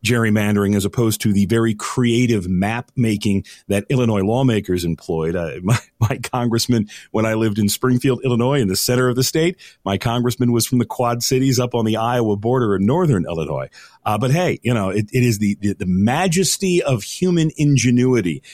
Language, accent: English, American